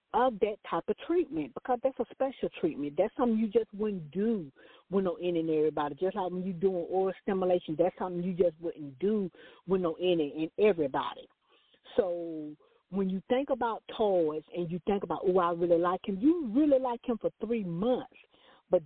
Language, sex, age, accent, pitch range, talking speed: English, female, 50-69, American, 170-235 Hz, 185 wpm